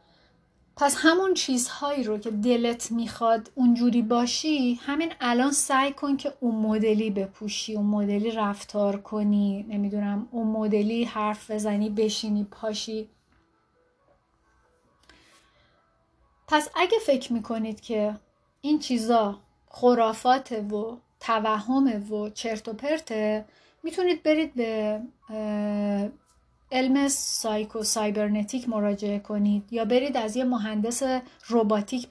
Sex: female